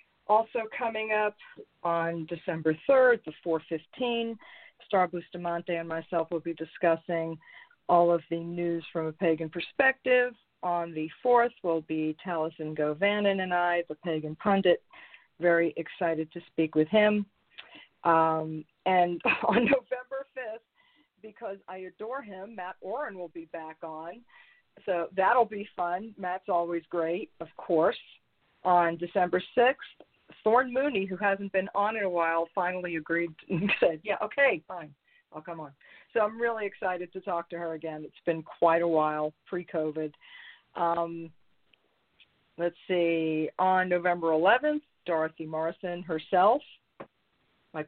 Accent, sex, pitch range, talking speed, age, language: American, female, 165-215 Hz, 140 wpm, 50-69, English